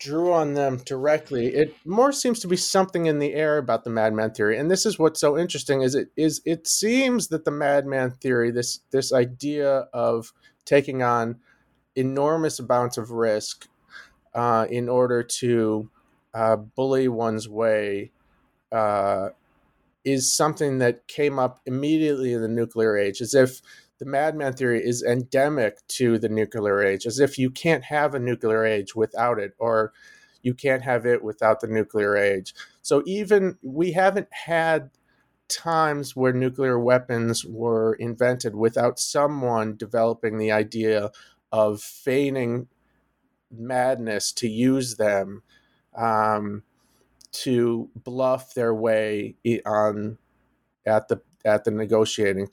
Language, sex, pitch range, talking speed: English, male, 110-140 Hz, 140 wpm